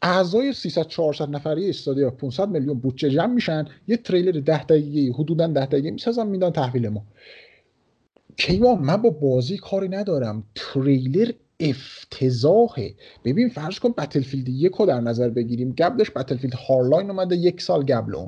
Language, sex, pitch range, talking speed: Persian, male, 135-195 Hz, 145 wpm